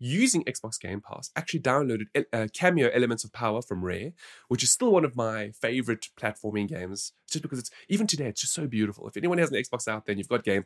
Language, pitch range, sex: English, 115-170 Hz, male